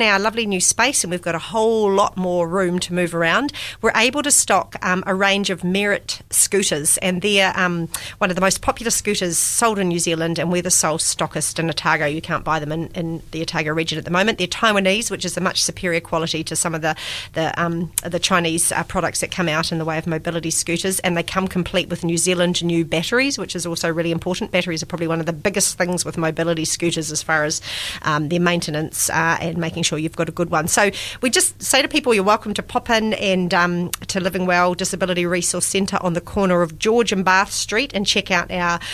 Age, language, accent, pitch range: 40-59, English, Australian, 165-200 Hz